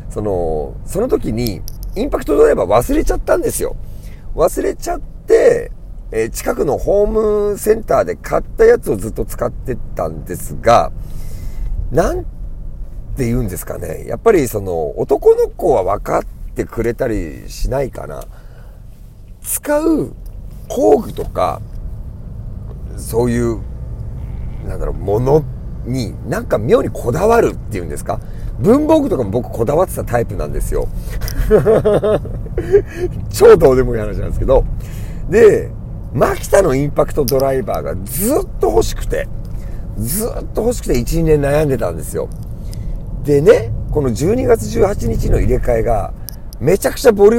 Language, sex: Japanese, male